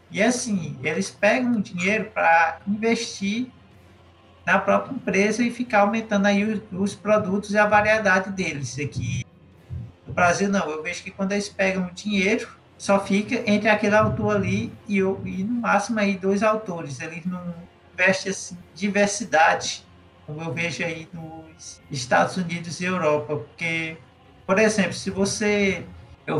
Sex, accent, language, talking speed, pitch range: male, Brazilian, Portuguese, 155 wpm, 165-210 Hz